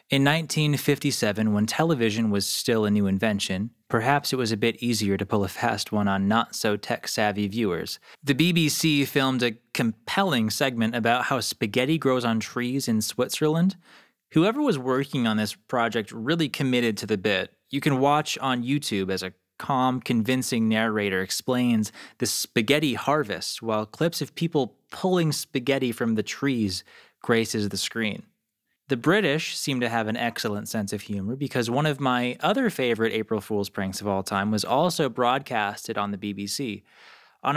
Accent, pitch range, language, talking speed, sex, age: American, 110-140 Hz, English, 165 wpm, male, 20-39